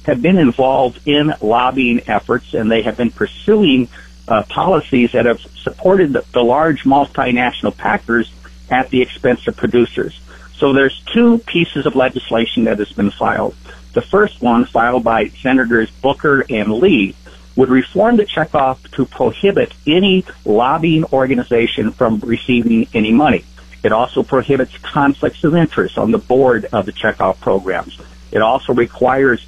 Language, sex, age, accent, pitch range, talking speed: English, male, 50-69, American, 105-135 Hz, 150 wpm